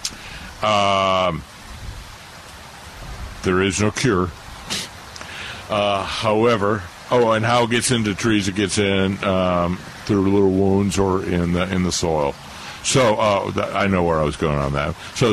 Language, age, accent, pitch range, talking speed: English, 60-79, American, 80-105 Hz, 155 wpm